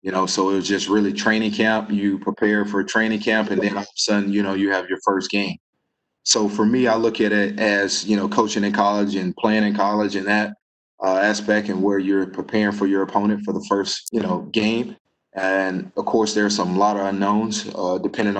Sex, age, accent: male, 20-39, American